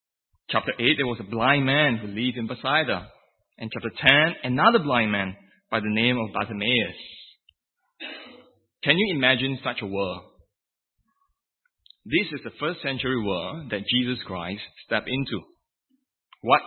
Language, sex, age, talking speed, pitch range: English, male, 20-39, 140 wpm, 110-165 Hz